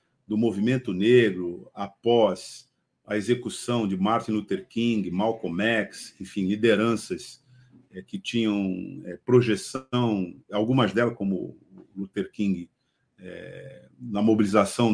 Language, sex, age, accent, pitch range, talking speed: Portuguese, male, 50-69, Brazilian, 100-135 Hz, 95 wpm